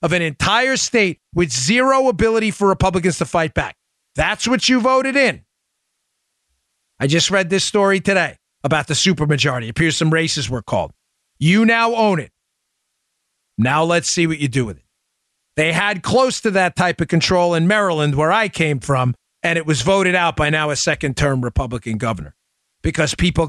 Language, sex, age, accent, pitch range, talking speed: English, male, 40-59, American, 115-170 Hz, 180 wpm